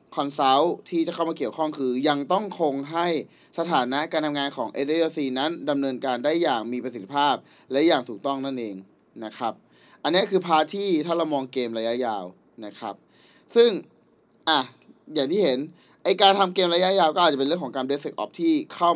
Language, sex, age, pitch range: Thai, male, 20-39, 140-175 Hz